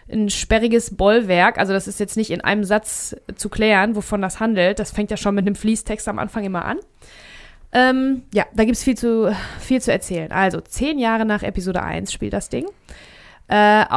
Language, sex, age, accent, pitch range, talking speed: German, female, 20-39, German, 200-245 Hz, 200 wpm